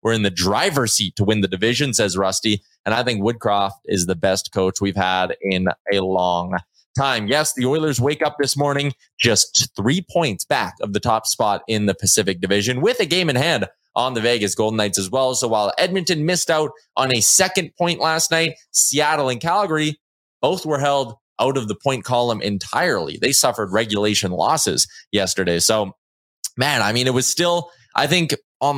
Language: English